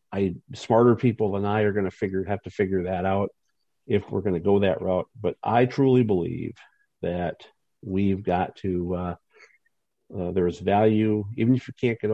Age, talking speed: 50-69, 195 wpm